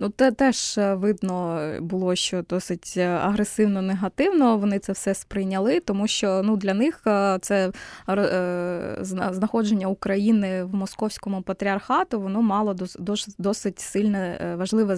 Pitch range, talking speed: 185-220 Hz, 110 wpm